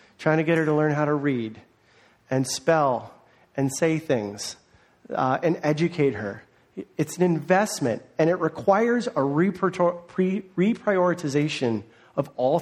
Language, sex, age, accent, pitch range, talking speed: English, male, 40-59, American, 140-195 Hz, 140 wpm